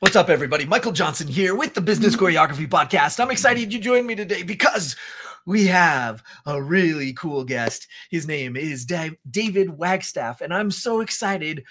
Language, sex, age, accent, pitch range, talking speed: English, male, 30-49, American, 125-170 Hz, 170 wpm